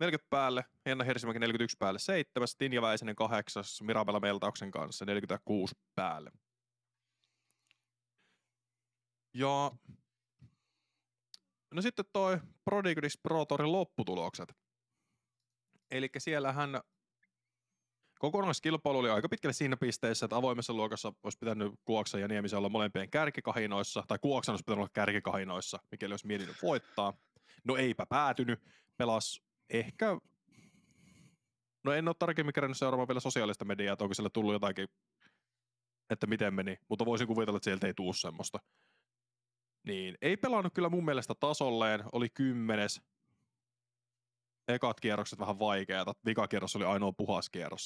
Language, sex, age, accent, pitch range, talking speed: Finnish, male, 20-39, native, 105-135 Hz, 120 wpm